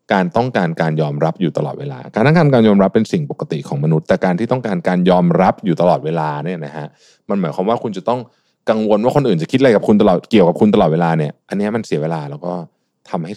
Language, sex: Thai, male